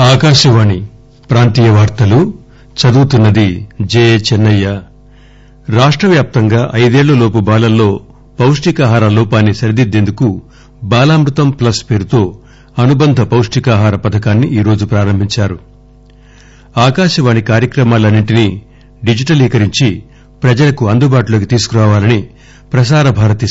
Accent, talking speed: Indian, 85 wpm